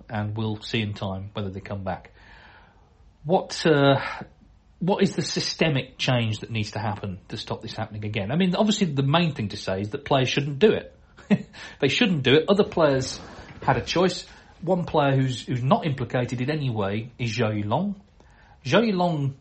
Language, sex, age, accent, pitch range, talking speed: English, male, 40-59, British, 105-150 Hz, 200 wpm